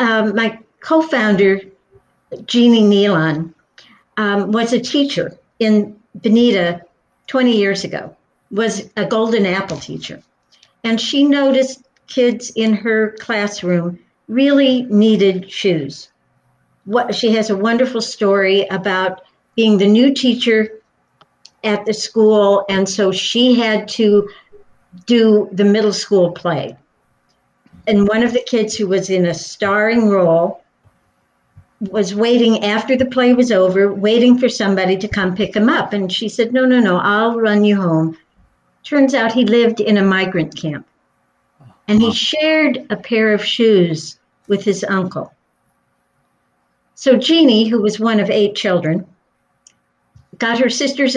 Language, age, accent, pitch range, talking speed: English, 60-79, American, 185-230 Hz, 140 wpm